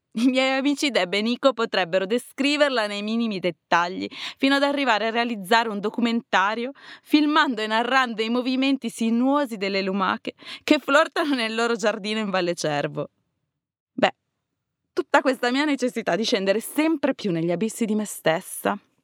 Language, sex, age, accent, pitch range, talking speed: Italian, female, 20-39, native, 195-265 Hz, 150 wpm